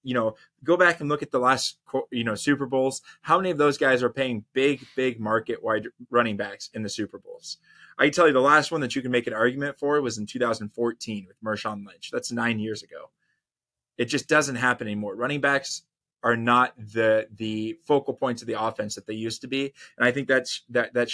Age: 20-39